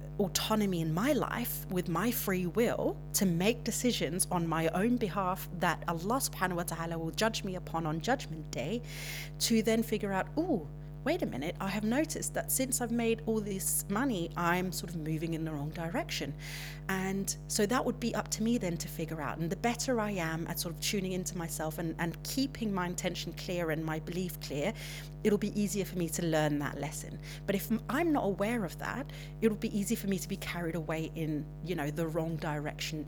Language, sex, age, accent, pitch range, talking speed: English, female, 30-49, British, 155-195 Hz, 210 wpm